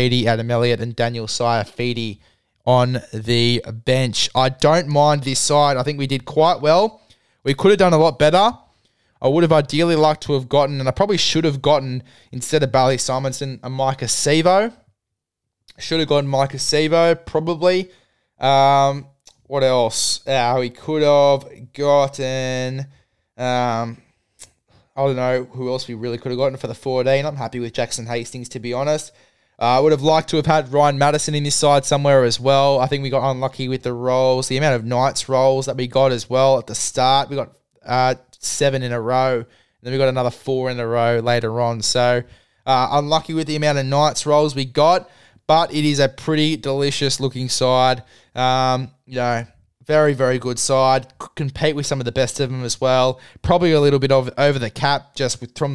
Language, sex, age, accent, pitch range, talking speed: English, male, 20-39, Australian, 125-145 Hz, 195 wpm